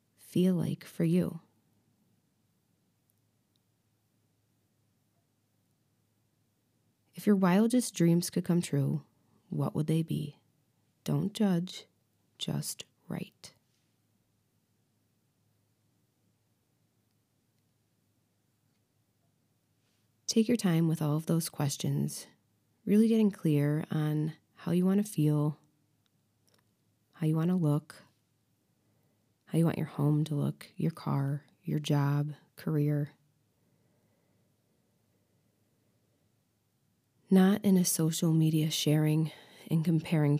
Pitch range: 115-165 Hz